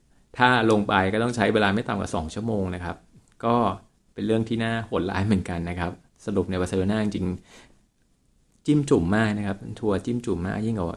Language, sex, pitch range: Thai, male, 95-115 Hz